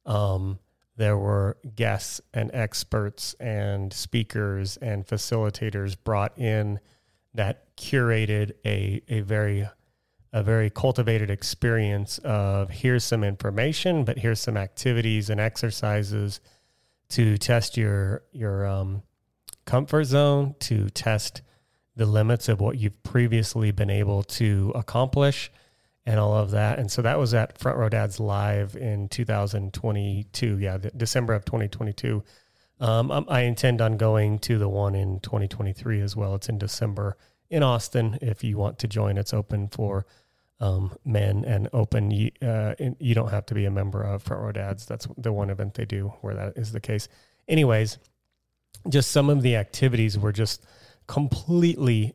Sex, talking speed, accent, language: male, 150 wpm, American, English